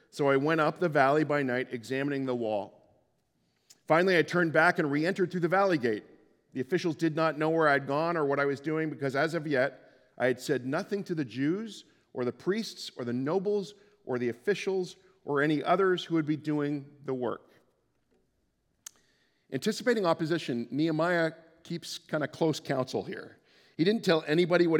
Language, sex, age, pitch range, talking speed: English, male, 40-59, 135-170 Hz, 185 wpm